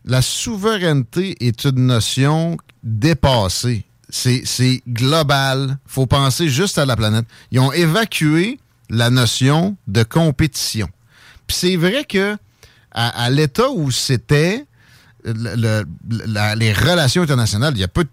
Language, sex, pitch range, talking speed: French, male, 120-165 Hz, 140 wpm